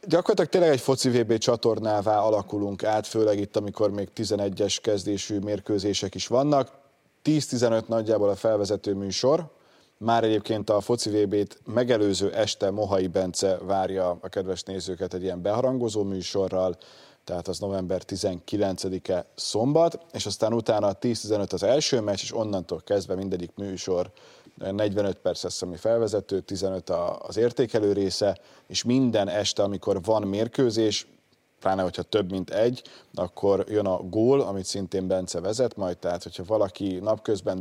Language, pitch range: Hungarian, 95-105 Hz